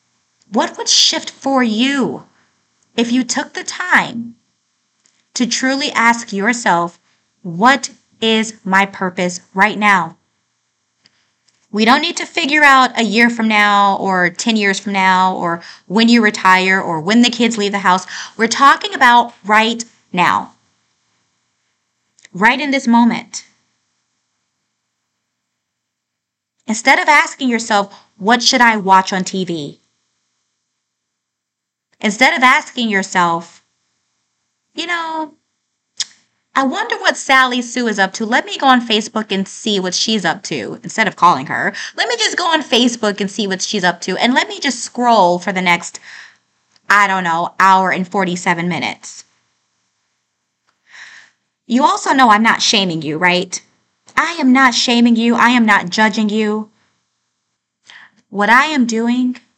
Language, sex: English, female